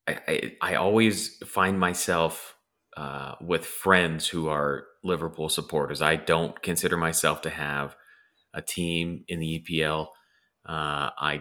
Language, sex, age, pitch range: English, male, 30-49, 75-85 Hz